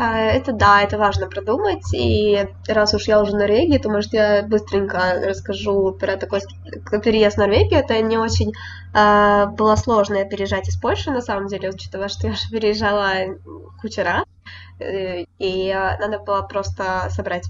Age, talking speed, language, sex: 10-29, 160 wpm, Ukrainian, female